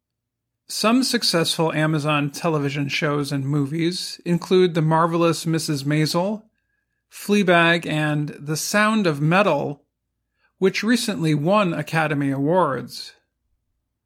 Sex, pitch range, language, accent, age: male, 150-185 Hz, Chinese, American, 40-59